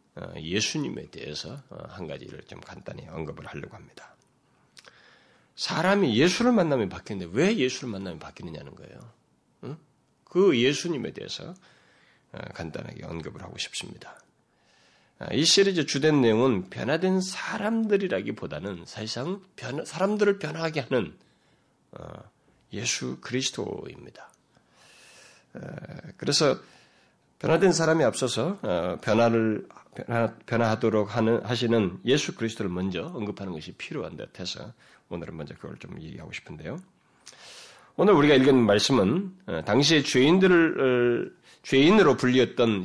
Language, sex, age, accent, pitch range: Korean, male, 40-59, native, 115-160 Hz